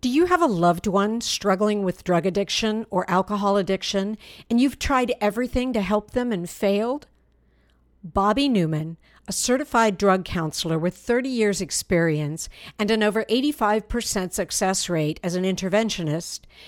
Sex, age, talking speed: female, 50-69, 150 wpm